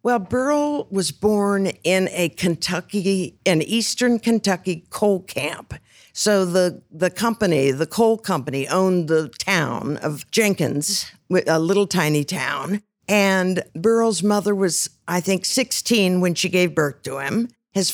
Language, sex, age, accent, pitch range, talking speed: English, female, 60-79, American, 160-200 Hz, 140 wpm